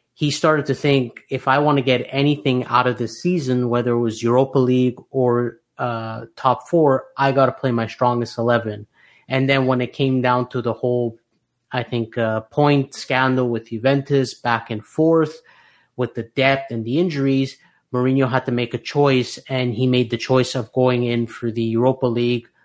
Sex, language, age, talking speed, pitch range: male, English, 30-49, 195 wpm, 120-135 Hz